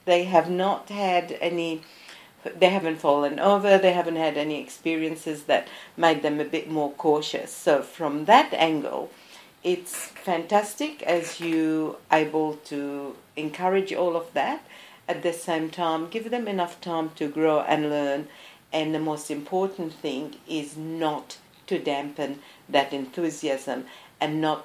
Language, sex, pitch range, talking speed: English, female, 145-175 Hz, 145 wpm